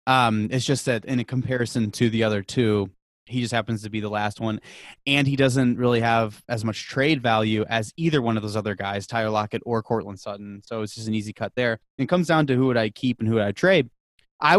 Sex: male